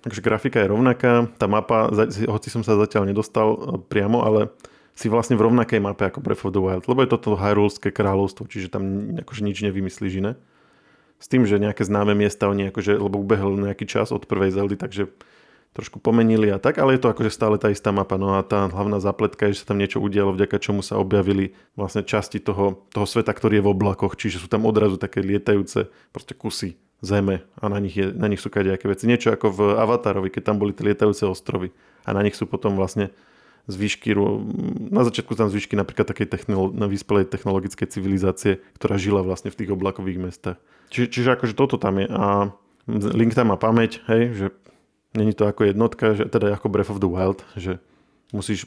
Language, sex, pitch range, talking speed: Slovak, male, 100-110 Hz, 200 wpm